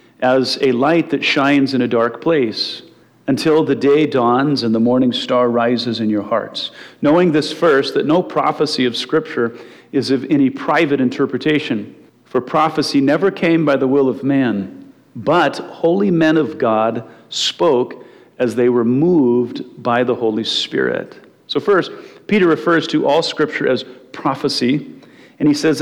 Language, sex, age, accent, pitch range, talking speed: English, male, 40-59, American, 120-145 Hz, 160 wpm